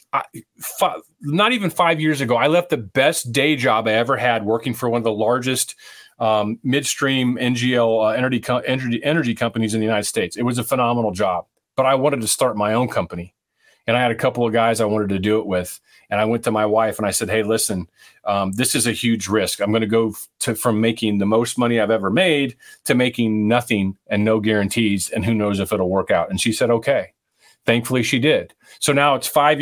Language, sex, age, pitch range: English, male, 40-59, 110-145 Hz